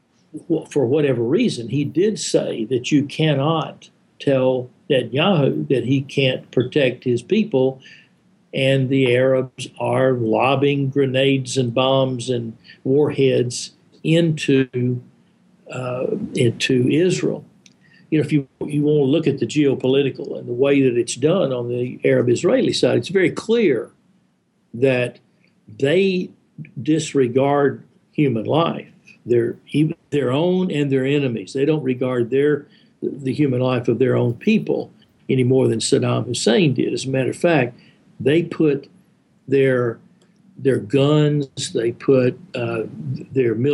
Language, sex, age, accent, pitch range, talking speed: English, male, 60-79, American, 130-155 Hz, 135 wpm